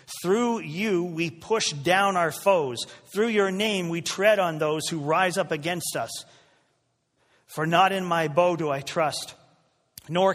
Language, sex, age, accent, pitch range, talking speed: English, male, 40-59, American, 135-175 Hz, 160 wpm